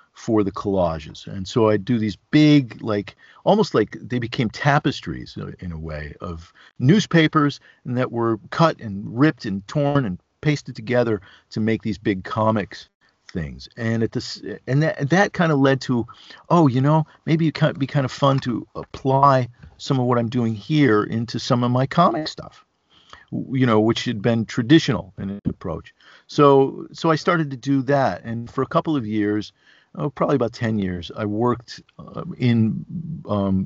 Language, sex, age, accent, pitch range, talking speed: English, male, 50-69, American, 105-135 Hz, 180 wpm